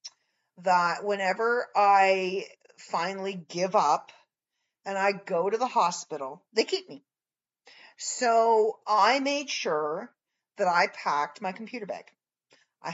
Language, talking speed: English, 120 wpm